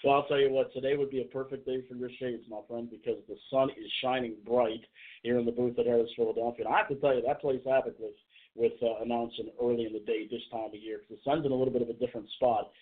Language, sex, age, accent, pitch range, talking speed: English, male, 50-69, American, 115-140 Hz, 290 wpm